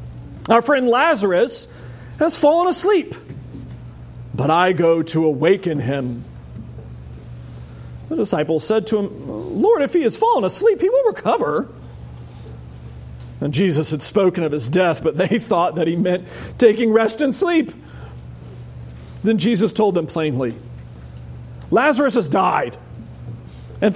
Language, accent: English, American